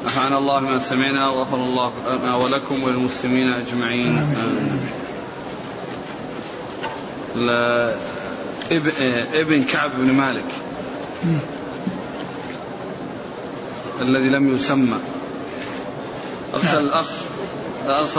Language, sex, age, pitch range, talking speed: Arabic, male, 30-49, 135-155 Hz, 65 wpm